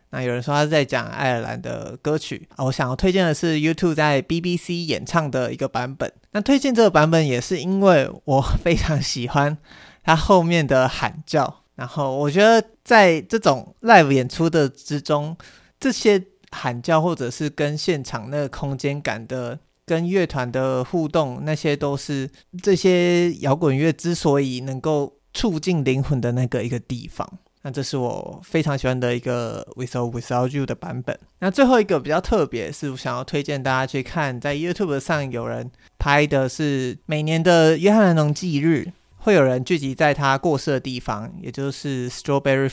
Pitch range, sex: 130-170 Hz, male